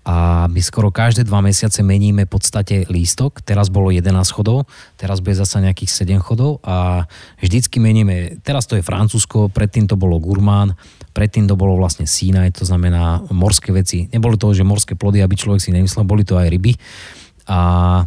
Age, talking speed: 20-39, 180 wpm